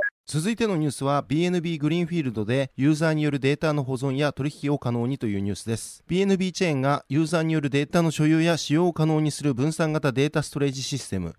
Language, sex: Japanese, male